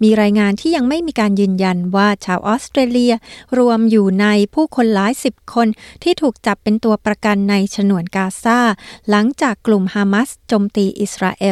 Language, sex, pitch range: Thai, female, 195-230 Hz